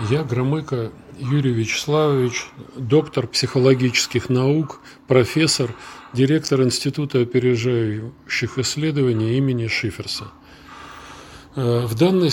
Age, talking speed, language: 40-59, 80 wpm, Russian